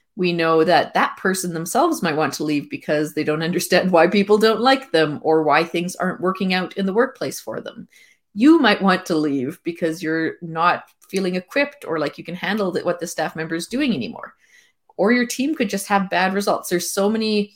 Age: 30-49